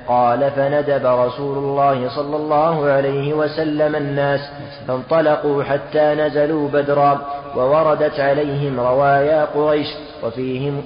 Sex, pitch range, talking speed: male, 140-150 Hz, 100 wpm